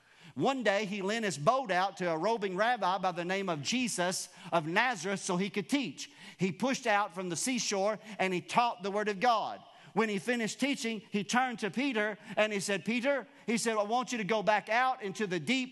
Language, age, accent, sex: English, 50-69, American, male